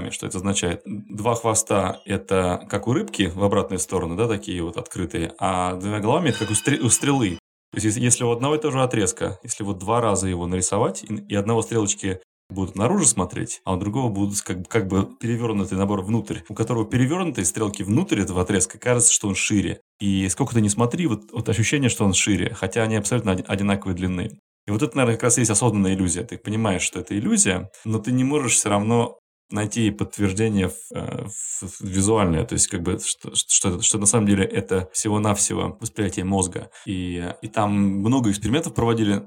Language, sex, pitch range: Russian, male, 95-115 Hz